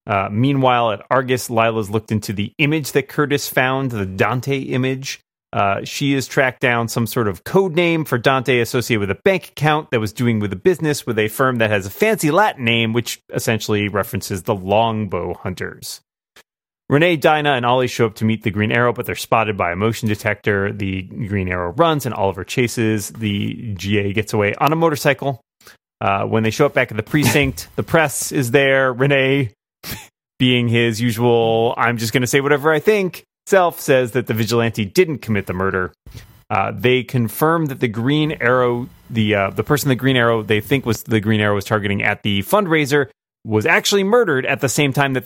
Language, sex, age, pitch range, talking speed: English, male, 30-49, 110-140 Hz, 200 wpm